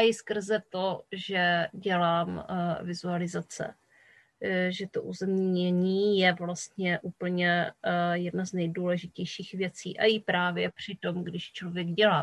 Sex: female